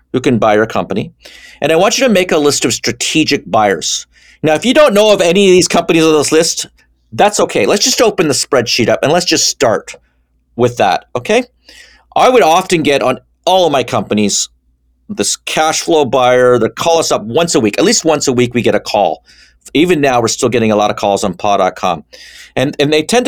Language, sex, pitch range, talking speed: English, male, 115-165 Hz, 225 wpm